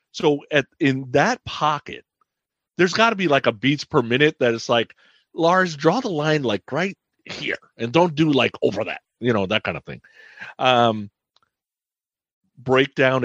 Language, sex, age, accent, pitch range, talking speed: English, male, 40-59, American, 110-145 Hz, 170 wpm